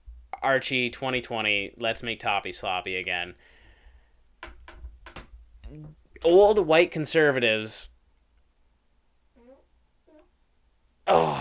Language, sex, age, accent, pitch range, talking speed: English, male, 20-39, American, 90-130 Hz, 60 wpm